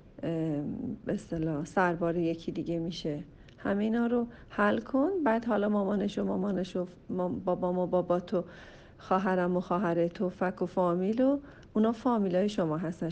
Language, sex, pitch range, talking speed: Persian, female, 170-205 Hz, 155 wpm